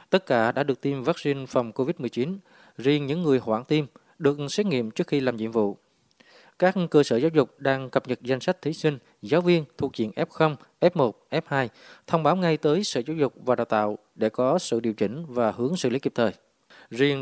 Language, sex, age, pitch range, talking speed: Vietnamese, male, 20-39, 115-145 Hz, 215 wpm